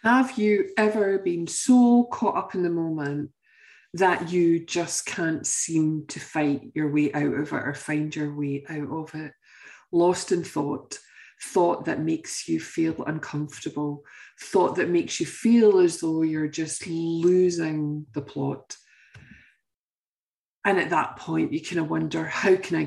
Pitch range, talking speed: 150-195 Hz, 160 wpm